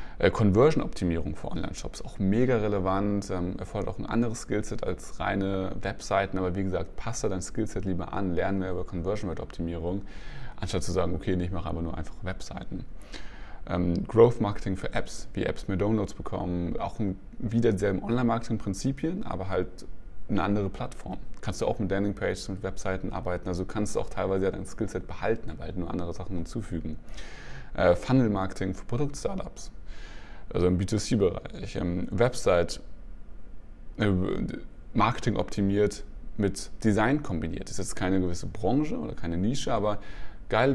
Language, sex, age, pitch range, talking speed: German, male, 20-39, 90-110 Hz, 150 wpm